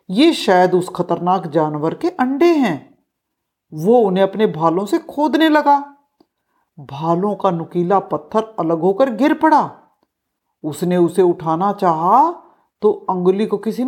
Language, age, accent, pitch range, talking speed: Hindi, 50-69, native, 180-290 Hz, 135 wpm